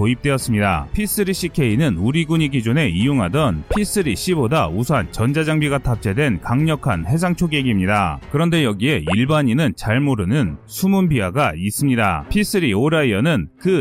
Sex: male